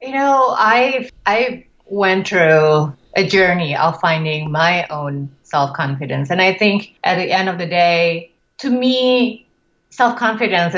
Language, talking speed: English, 140 wpm